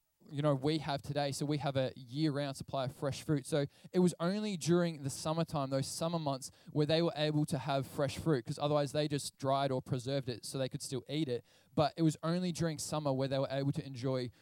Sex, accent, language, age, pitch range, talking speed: male, Australian, English, 20-39, 140-165 Hz, 240 wpm